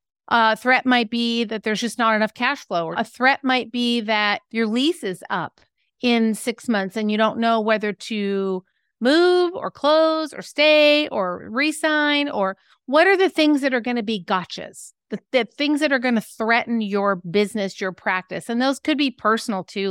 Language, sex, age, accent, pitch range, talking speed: English, female, 40-59, American, 205-285 Hz, 200 wpm